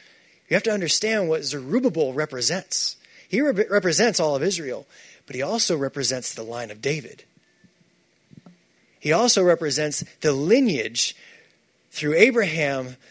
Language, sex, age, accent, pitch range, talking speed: English, male, 30-49, American, 155-215 Hz, 125 wpm